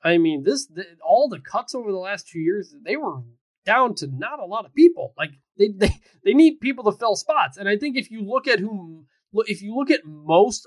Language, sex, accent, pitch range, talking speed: English, male, American, 150-200 Hz, 235 wpm